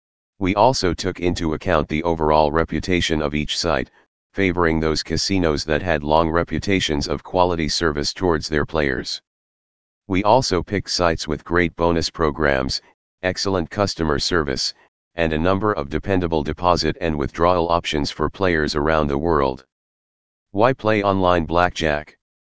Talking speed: 140 wpm